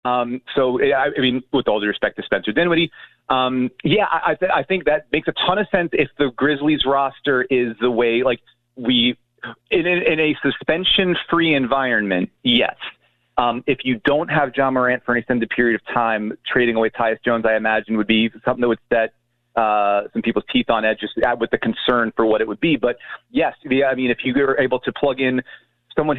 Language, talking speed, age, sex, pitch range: English, 200 wpm, 30-49, male, 115-135 Hz